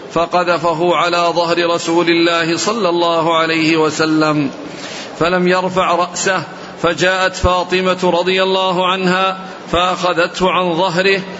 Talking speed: 105 wpm